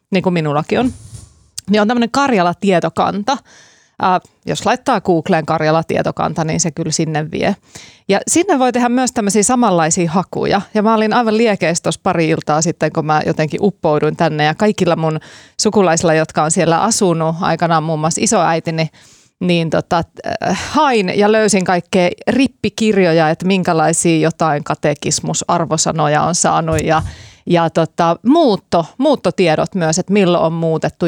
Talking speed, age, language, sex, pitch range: 145 wpm, 30-49, Finnish, female, 165-210 Hz